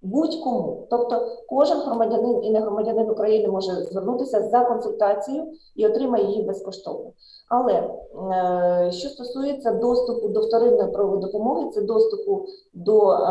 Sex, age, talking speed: female, 30-49, 120 wpm